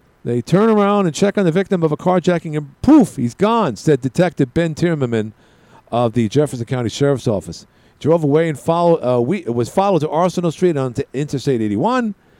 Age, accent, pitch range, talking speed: 50-69, American, 115-165 Hz, 190 wpm